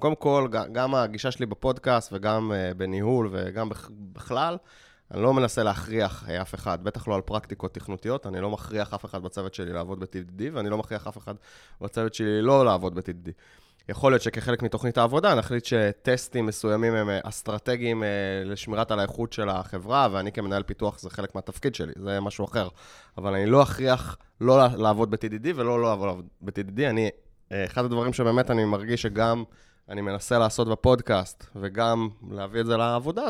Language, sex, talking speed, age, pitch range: Hebrew, male, 165 wpm, 20-39, 100-125 Hz